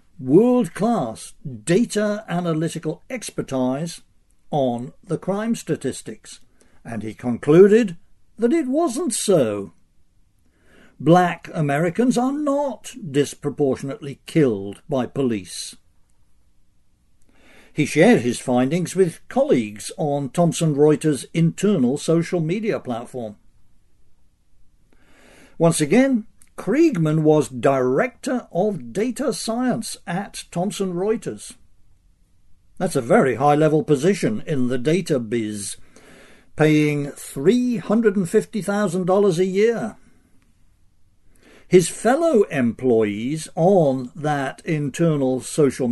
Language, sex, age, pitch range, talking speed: English, male, 60-79, 130-210 Hz, 90 wpm